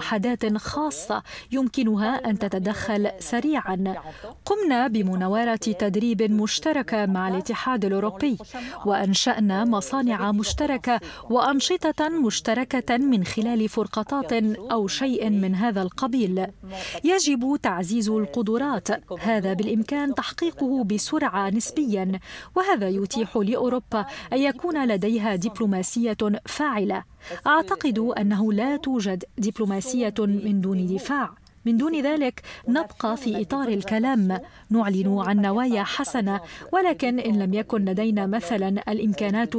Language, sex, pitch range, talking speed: Arabic, female, 205-255 Hz, 105 wpm